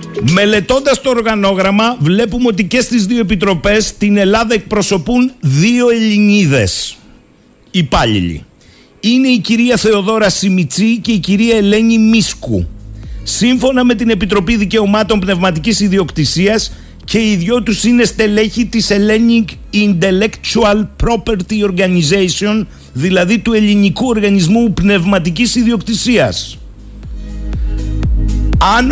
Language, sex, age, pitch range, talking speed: Greek, male, 50-69, 170-225 Hz, 105 wpm